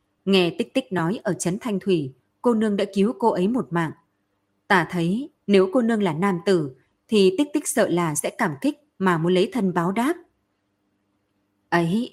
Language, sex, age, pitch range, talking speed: Vietnamese, female, 20-39, 170-220 Hz, 195 wpm